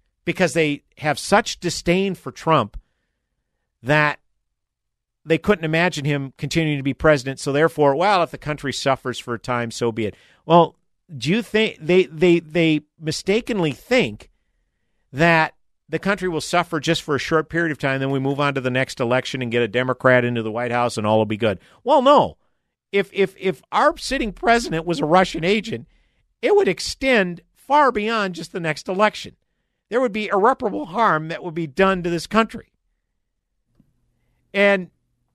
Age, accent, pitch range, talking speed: 50-69, American, 135-195 Hz, 180 wpm